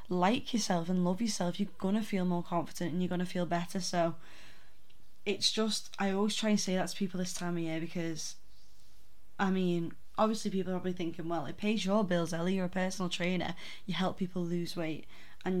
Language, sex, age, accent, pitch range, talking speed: English, female, 10-29, British, 170-200 Hz, 210 wpm